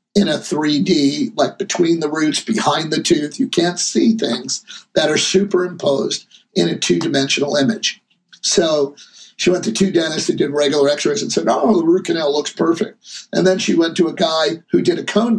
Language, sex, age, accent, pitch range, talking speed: English, male, 50-69, American, 170-210 Hz, 195 wpm